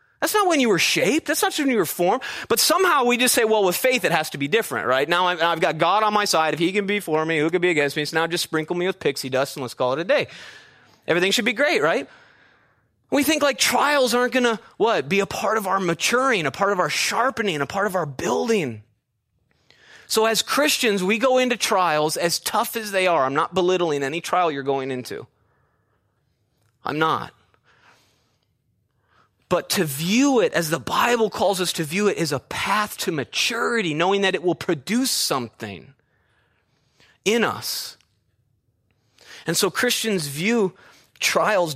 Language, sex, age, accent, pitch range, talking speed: English, male, 30-49, American, 135-205 Hz, 200 wpm